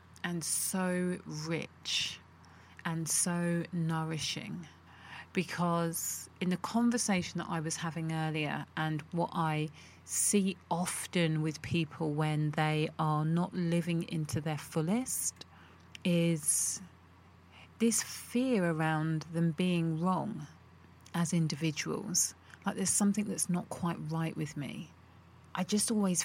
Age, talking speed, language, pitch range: 30-49, 115 wpm, English, 155-180 Hz